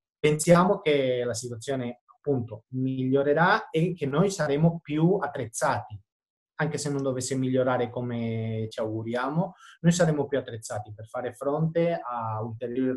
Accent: native